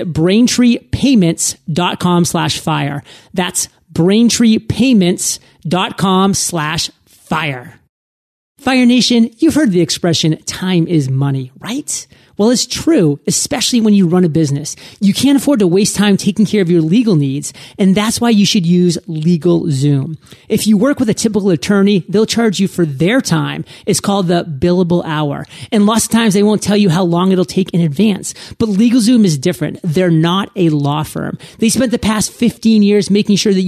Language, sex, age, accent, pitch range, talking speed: English, male, 30-49, American, 170-215 Hz, 170 wpm